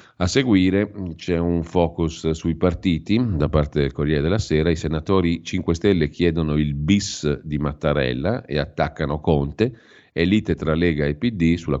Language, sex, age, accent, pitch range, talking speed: Italian, male, 40-59, native, 75-85 Hz, 160 wpm